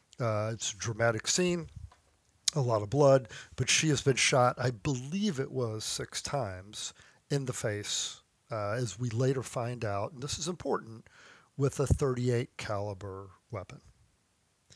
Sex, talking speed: male, 155 wpm